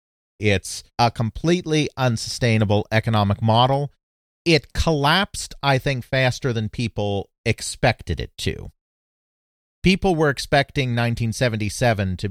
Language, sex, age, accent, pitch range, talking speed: English, male, 40-59, American, 95-125 Hz, 100 wpm